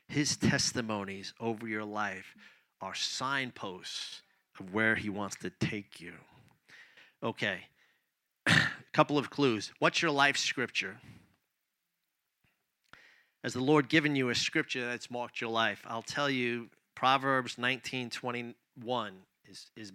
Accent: American